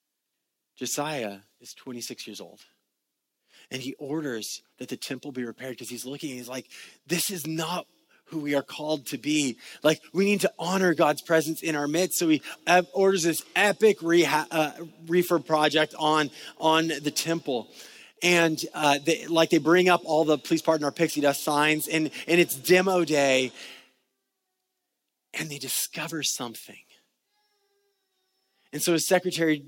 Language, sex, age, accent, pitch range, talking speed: English, male, 30-49, American, 130-165 Hz, 160 wpm